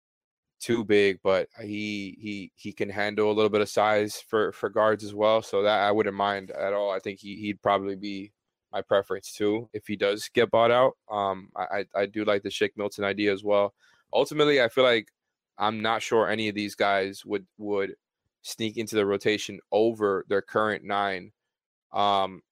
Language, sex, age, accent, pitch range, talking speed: English, male, 20-39, American, 100-110 Hz, 190 wpm